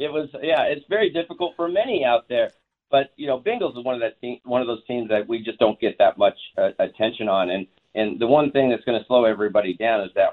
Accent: American